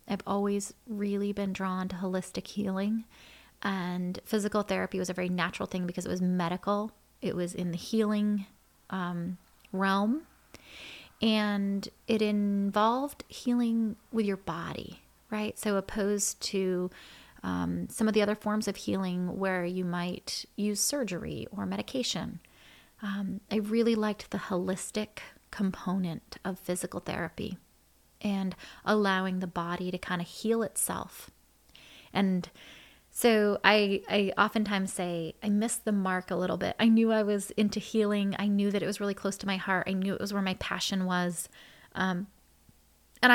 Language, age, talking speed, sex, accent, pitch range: English, 30-49, 155 wpm, female, American, 180-210 Hz